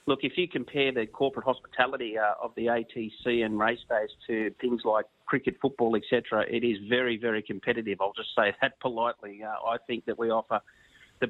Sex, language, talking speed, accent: male, English, 200 wpm, Australian